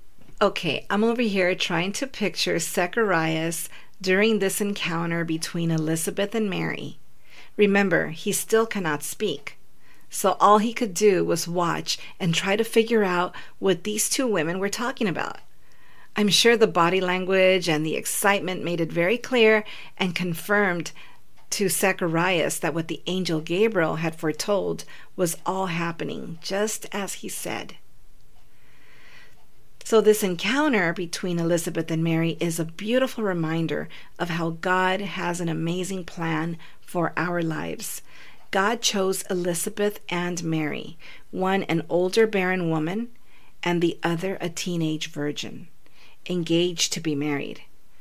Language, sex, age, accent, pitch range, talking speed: English, female, 40-59, American, 165-200 Hz, 135 wpm